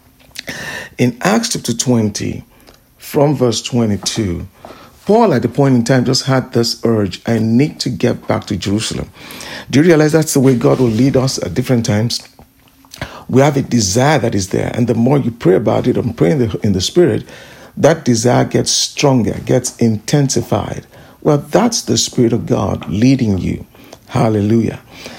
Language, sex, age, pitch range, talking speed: English, male, 50-69, 115-145 Hz, 170 wpm